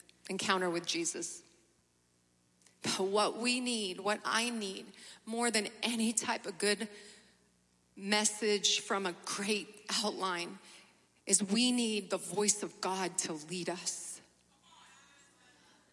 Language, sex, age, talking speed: English, female, 30-49, 115 wpm